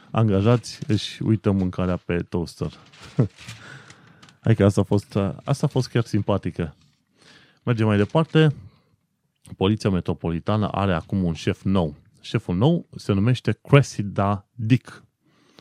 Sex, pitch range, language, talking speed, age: male, 90-125 Hz, Romanian, 120 wpm, 20-39